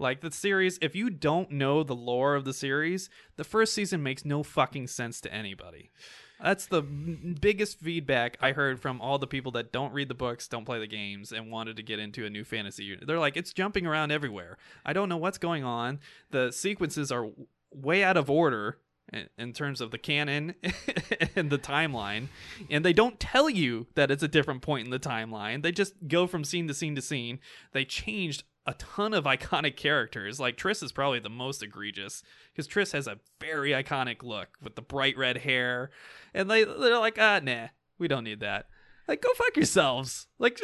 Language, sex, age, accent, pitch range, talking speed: English, male, 20-39, American, 130-200 Hz, 205 wpm